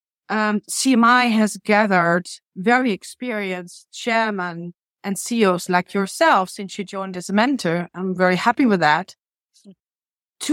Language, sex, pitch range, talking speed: English, female, 195-240 Hz, 130 wpm